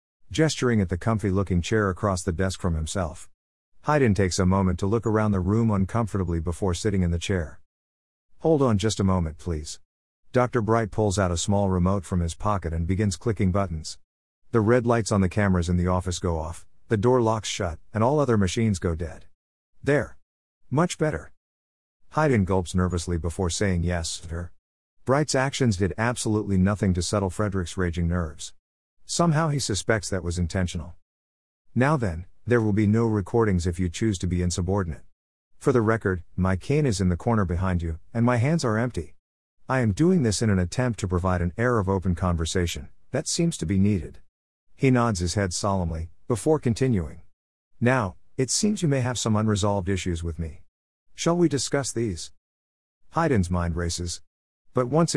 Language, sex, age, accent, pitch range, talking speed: English, male, 50-69, American, 85-115 Hz, 185 wpm